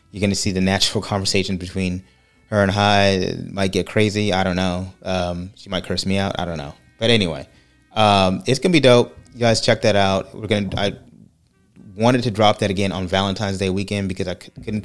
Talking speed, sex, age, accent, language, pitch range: 215 wpm, male, 30-49, American, English, 90-105 Hz